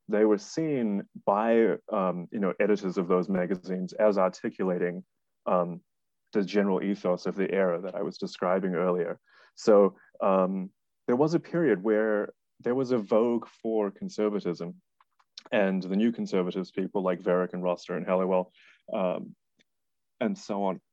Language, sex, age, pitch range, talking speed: English, male, 30-49, 90-110 Hz, 150 wpm